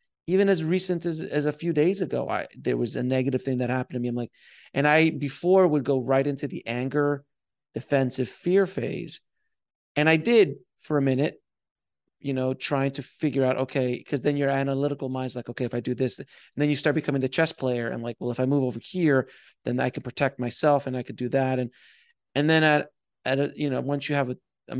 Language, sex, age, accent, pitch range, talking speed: English, male, 30-49, American, 125-150 Hz, 230 wpm